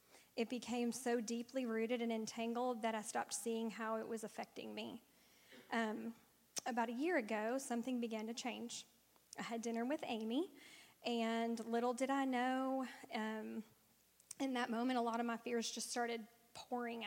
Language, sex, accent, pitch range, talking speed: English, female, American, 225-245 Hz, 165 wpm